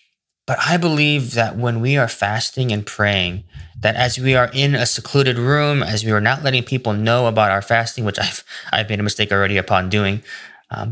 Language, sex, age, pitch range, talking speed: English, male, 20-39, 105-130 Hz, 210 wpm